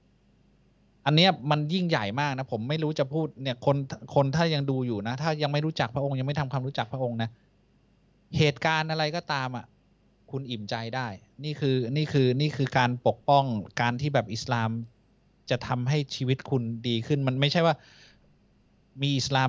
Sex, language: male, Thai